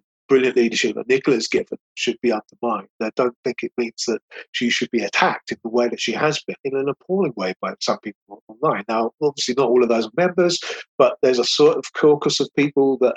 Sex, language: male, English